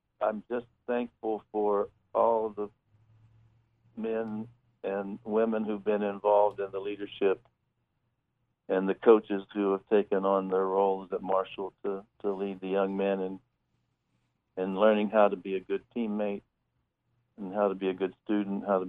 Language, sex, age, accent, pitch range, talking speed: English, male, 60-79, American, 100-115 Hz, 155 wpm